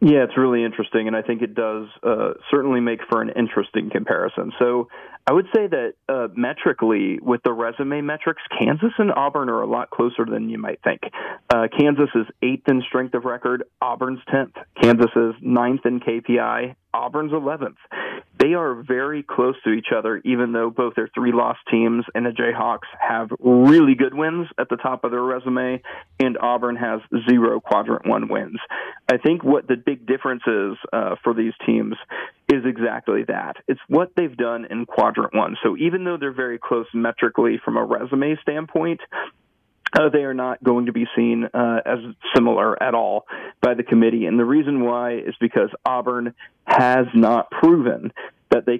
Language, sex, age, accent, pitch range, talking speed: English, male, 40-59, American, 120-140 Hz, 180 wpm